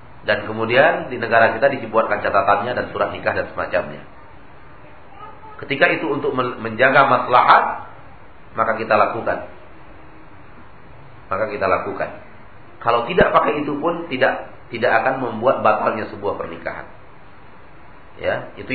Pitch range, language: 115-140 Hz, Malay